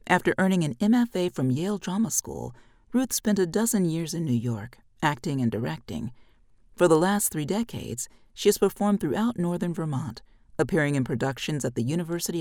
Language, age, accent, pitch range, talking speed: English, 40-59, American, 120-190 Hz, 175 wpm